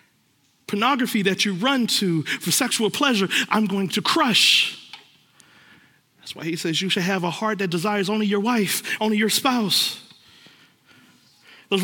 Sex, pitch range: male, 155-245 Hz